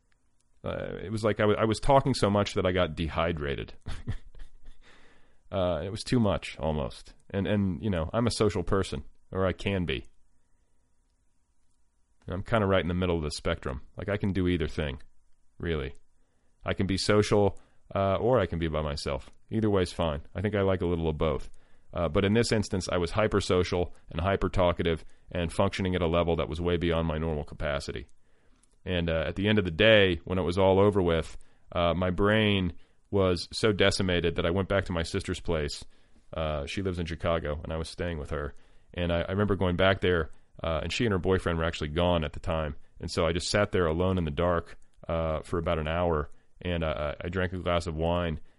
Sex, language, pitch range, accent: male, English, 80-100 Hz, American